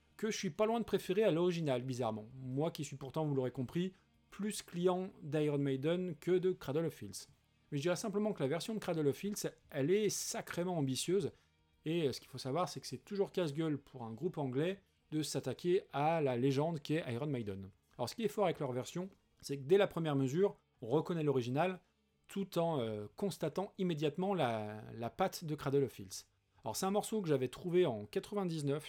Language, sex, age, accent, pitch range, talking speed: French, male, 40-59, French, 135-180 Hz, 210 wpm